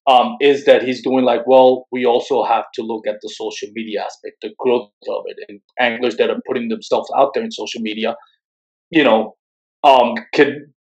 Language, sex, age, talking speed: English, male, 30-49, 195 wpm